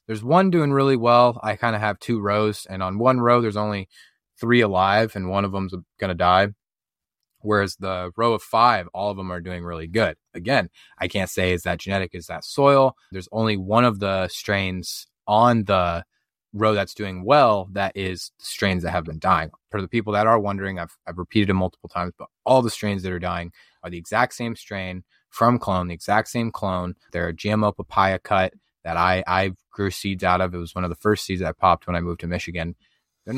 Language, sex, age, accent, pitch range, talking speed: English, male, 20-39, American, 90-110 Hz, 225 wpm